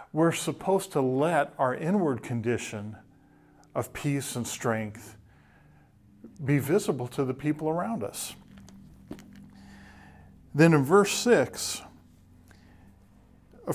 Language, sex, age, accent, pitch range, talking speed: English, male, 40-59, American, 120-160 Hz, 100 wpm